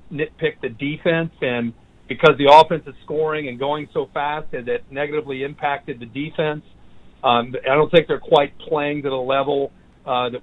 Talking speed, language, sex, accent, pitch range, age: 180 wpm, English, male, American, 135-165 Hz, 50-69